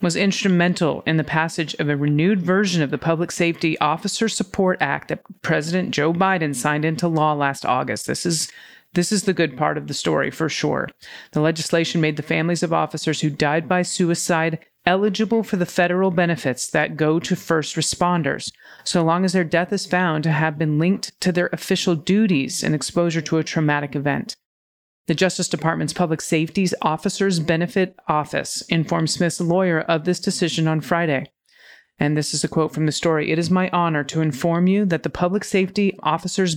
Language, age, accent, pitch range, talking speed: English, 40-59, American, 155-180 Hz, 190 wpm